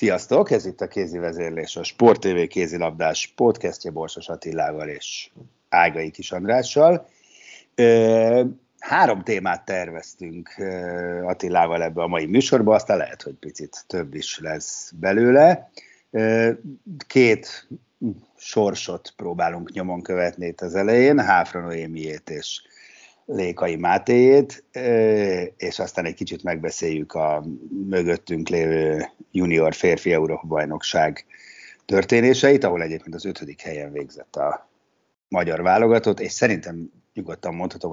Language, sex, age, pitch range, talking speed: Hungarian, male, 60-79, 80-115 Hz, 115 wpm